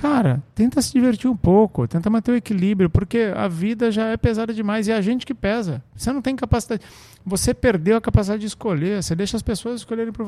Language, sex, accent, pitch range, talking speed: Portuguese, male, Brazilian, 140-225 Hz, 230 wpm